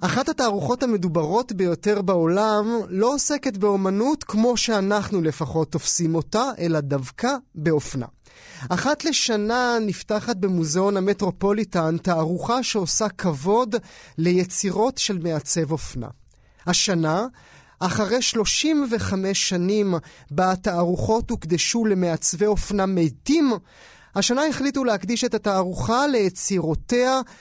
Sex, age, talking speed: male, 30-49, 95 wpm